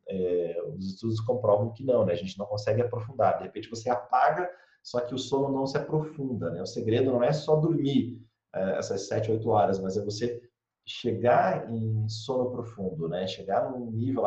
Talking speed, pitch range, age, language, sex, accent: 200 wpm, 110-140 Hz, 30-49, Portuguese, male, Brazilian